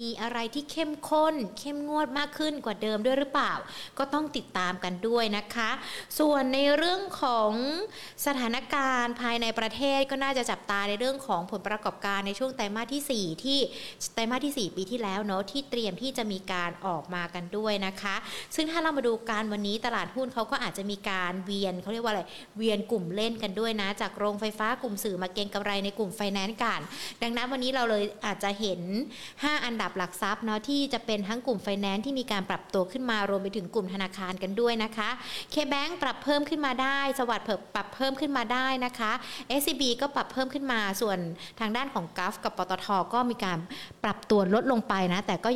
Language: Thai